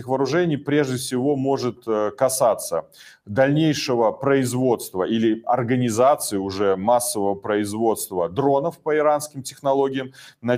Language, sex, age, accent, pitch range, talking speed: Ukrainian, male, 30-49, native, 120-145 Hz, 95 wpm